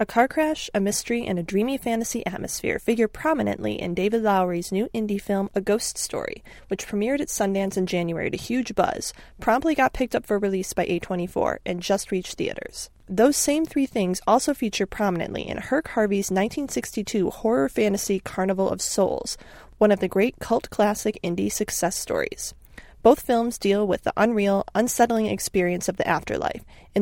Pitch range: 190-235 Hz